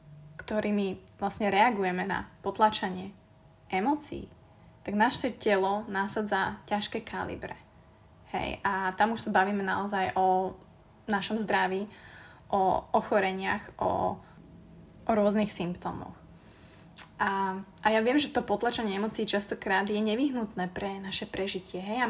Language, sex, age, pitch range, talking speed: Slovak, female, 20-39, 190-220 Hz, 120 wpm